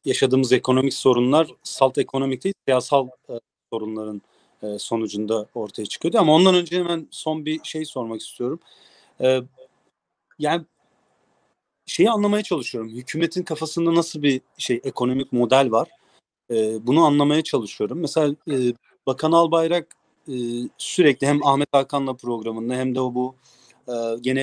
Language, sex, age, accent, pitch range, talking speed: Turkish, male, 40-59, native, 125-160 Hz, 135 wpm